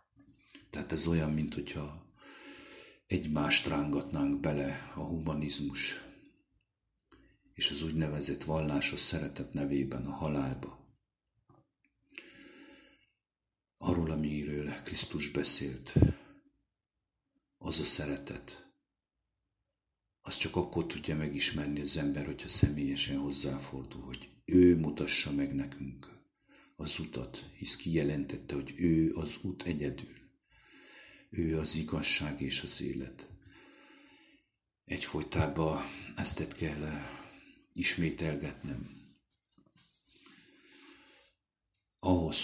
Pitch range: 70-85 Hz